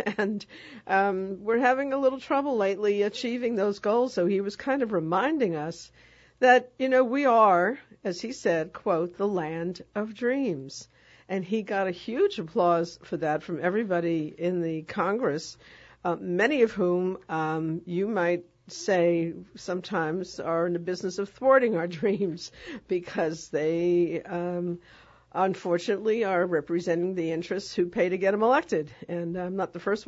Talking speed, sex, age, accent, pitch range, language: 160 wpm, female, 60-79, American, 165-205 Hz, English